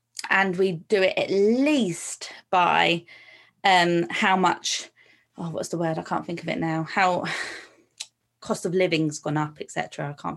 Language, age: English, 20-39